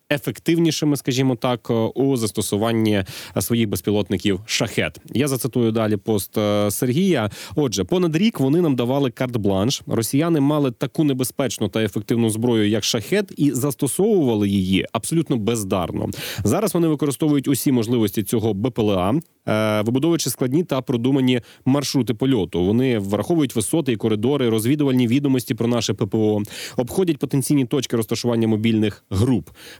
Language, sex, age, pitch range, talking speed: Ukrainian, male, 30-49, 110-140 Hz, 125 wpm